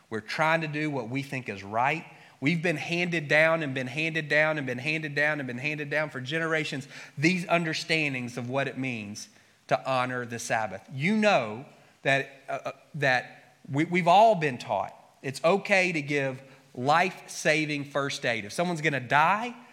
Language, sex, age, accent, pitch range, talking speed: English, male, 30-49, American, 140-185 Hz, 180 wpm